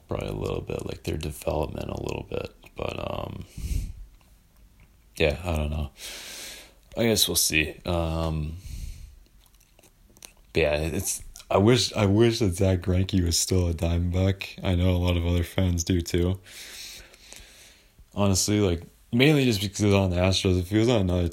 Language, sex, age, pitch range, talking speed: English, male, 20-39, 80-105 Hz, 165 wpm